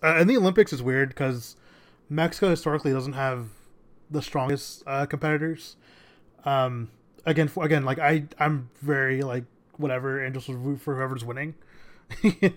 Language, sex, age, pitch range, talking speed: English, male, 20-39, 125-150 Hz, 155 wpm